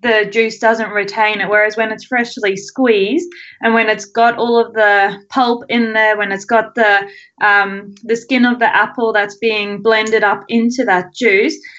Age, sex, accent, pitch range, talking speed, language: 20-39, female, Australian, 210-260 Hz, 185 wpm, English